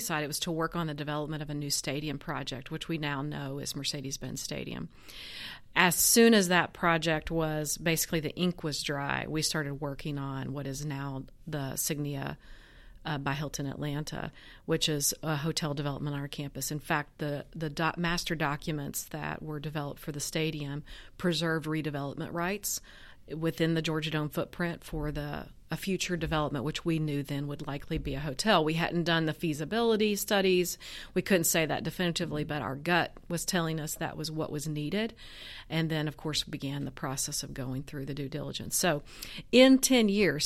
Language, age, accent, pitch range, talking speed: English, 40-59, American, 145-170 Hz, 185 wpm